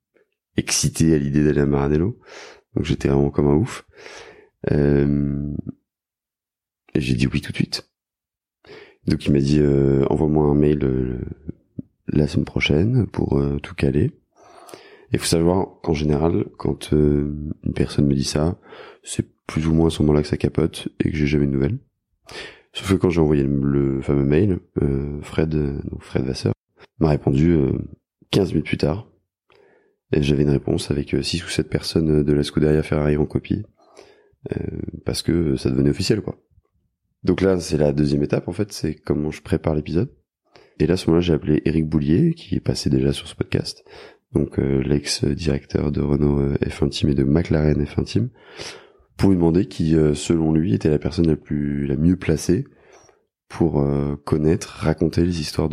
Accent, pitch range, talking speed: French, 70-85 Hz, 180 wpm